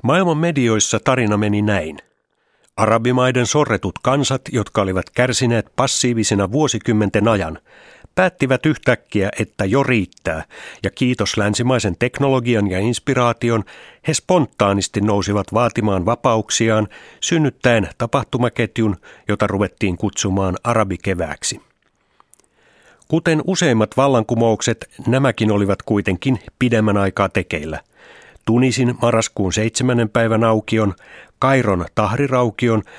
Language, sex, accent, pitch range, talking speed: Finnish, male, native, 100-125 Hz, 95 wpm